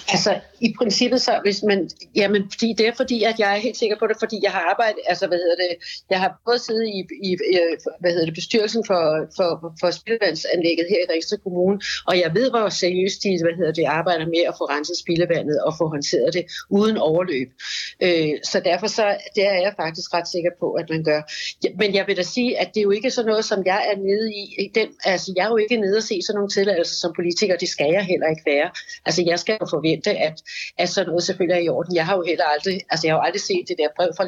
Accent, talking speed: native, 255 wpm